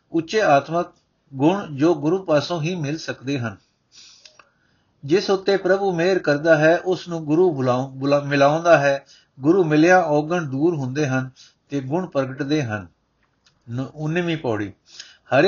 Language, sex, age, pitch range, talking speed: Punjabi, male, 60-79, 135-175 Hz, 135 wpm